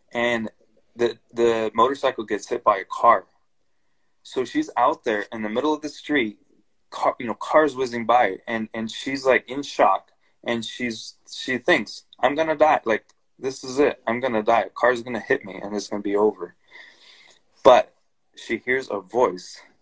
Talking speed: 180 wpm